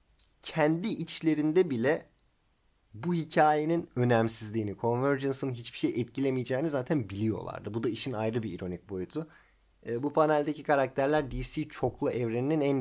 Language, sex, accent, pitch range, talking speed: Turkish, male, native, 110-150 Hz, 125 wpm